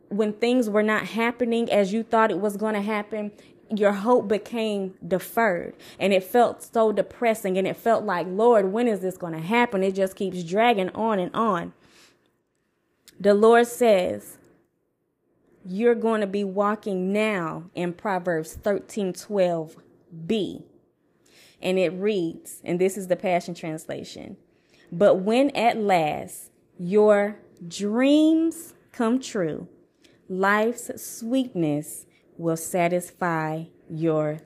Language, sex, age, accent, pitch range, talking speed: English, female, 20-39, American, 180-230 Hz, 130 wpm